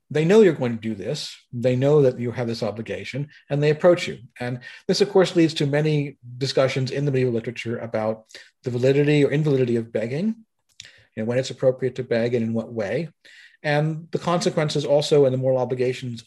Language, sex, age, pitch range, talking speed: English, male, 40-59, 120-150 Hz, 210 wpm